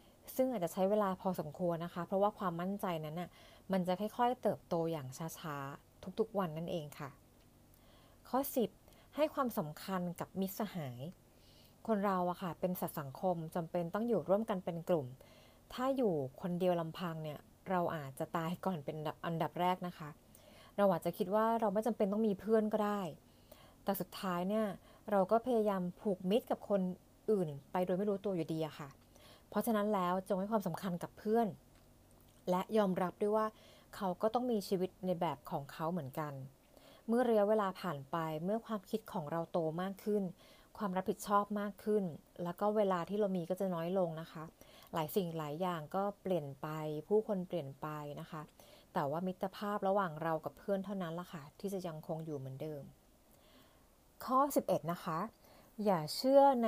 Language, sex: Thai, female